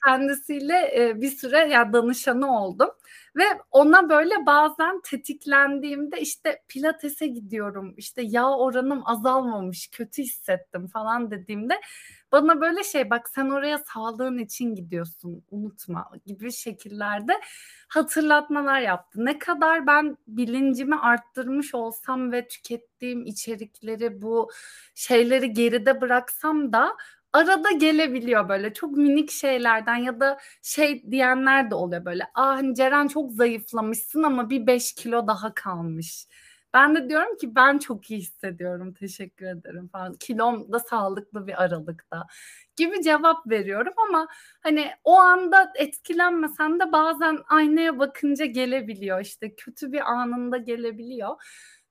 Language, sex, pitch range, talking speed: Turkish, female, 225-295 Hz, 125 wpm